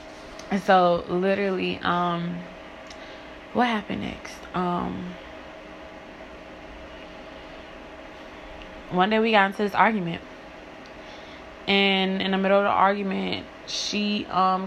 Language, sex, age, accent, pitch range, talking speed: English, female, 20-39, American, 180-210 Hz, 100 wpm